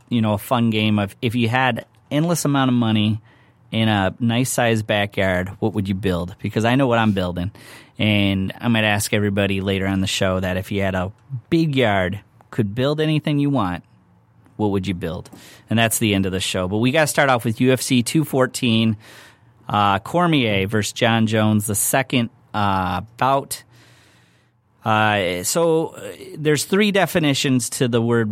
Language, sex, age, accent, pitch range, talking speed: English, male, 30-49, American, 105-125 Hz, 180 wpm